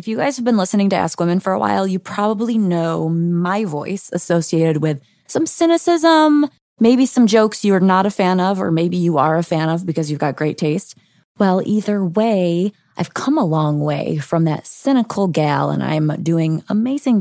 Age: 20-39